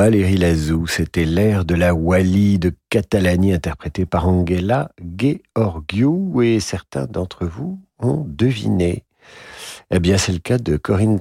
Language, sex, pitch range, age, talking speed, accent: French, male, 85-120 Hz, 50-69, 140 wpm, French